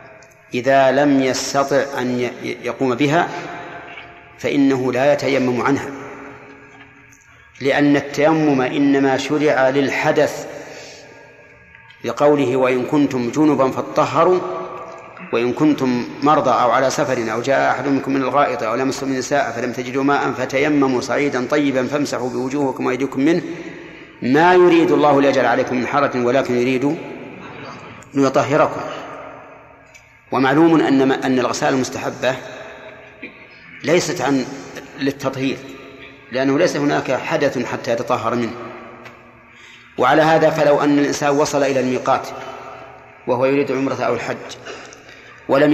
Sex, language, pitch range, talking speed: male, Arabic, 130-145 Hz, 110 wpm